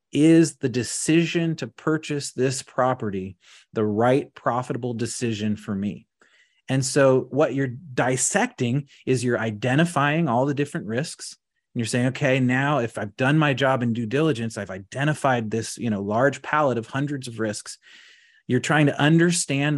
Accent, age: American, 30-49